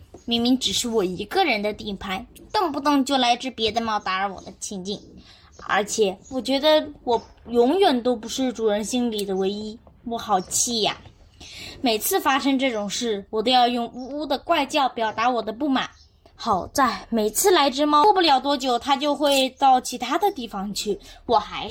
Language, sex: Chinese, female